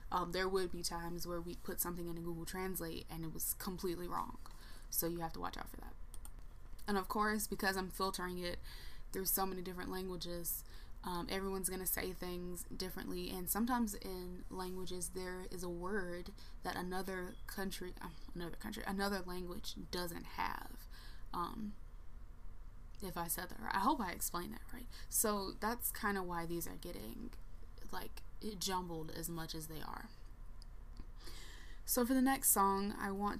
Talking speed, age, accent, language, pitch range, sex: 170 wpm, 20-39, American, English, 175-225 Hz, female